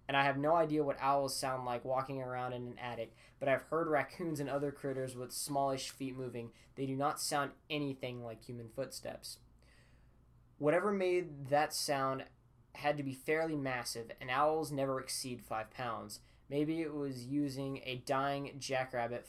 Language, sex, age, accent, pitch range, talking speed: English, male, 10-29, American, 120-145 Hz, 170 wpm